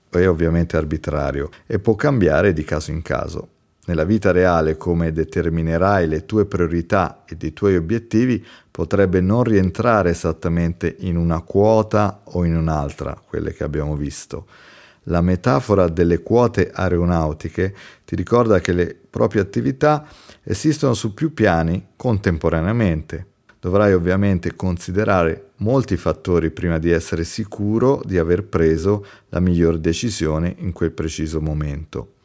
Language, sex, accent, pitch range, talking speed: Italian, male, native, 80-105 Hz, 130 wpm